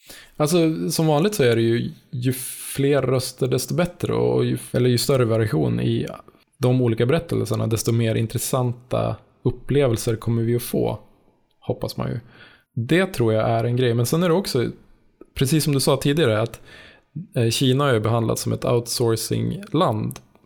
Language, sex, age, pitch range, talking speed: Swedish, male, 20-39, 115-135 Hz, 165 wpm